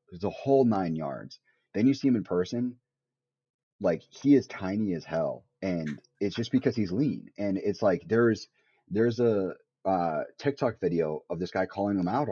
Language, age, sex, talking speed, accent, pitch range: English, 30-49, male, 185 wpm, American, 85-105 Hz